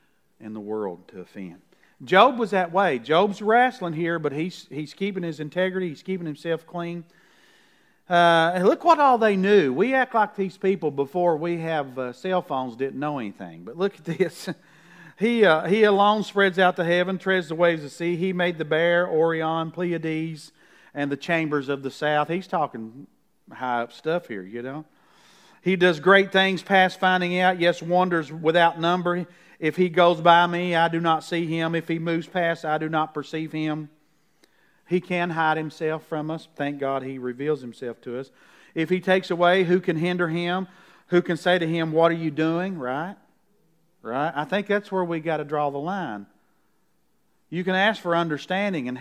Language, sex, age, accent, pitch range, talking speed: English, male, 50-69, American, 150-185 Hz, 195 wpm